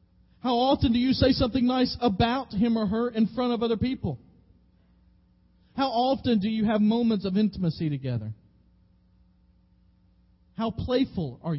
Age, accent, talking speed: 40-59, American, 145 wpm